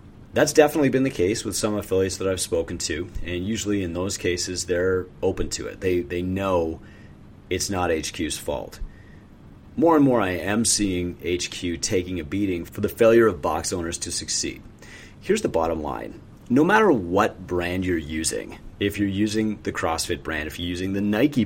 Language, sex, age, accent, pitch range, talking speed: English, male, 30-49, American, 90-110 Hz, 185 wpm